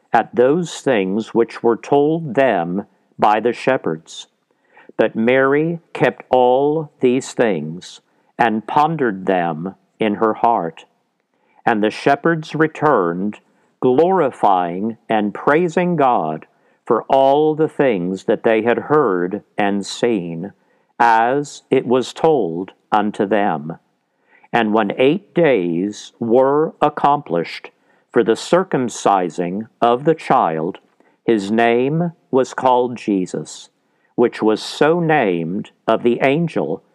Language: English